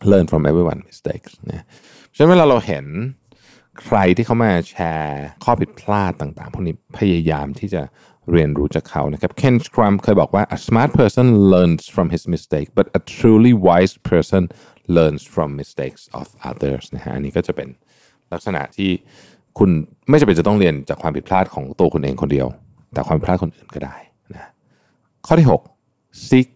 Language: Thai